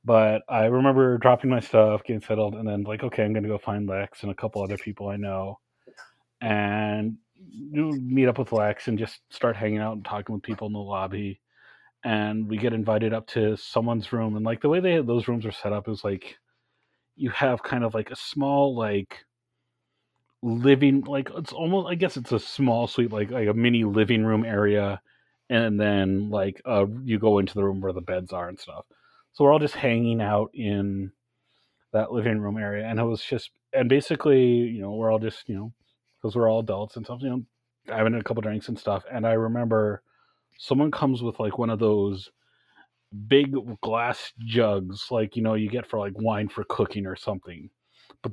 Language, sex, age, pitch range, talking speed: English, male, 30-49, 105-120 Hz, 205 wpm